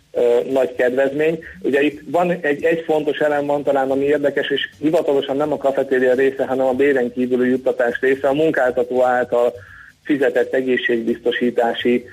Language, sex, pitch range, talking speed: Hungarian, male, 125-145 Hz, 155 wpm